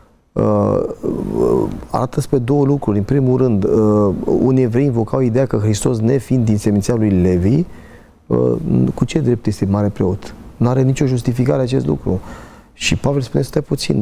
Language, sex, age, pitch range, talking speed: Romanian, male, 30-49, 100-120 Hz, 170 wpm